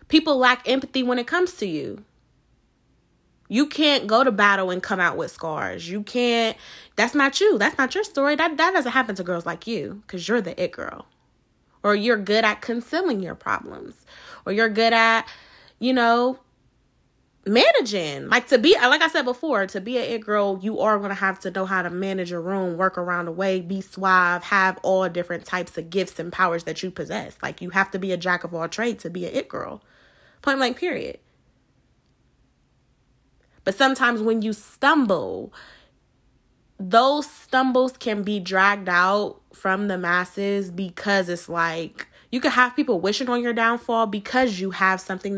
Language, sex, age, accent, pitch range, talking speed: English, female, 20-39, American, 185-245 Hz, 190 wpm